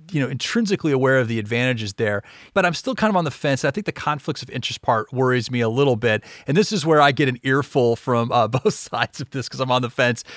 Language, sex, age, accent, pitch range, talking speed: English, male, 40-59, American, 115-150 Hz, 270 wpm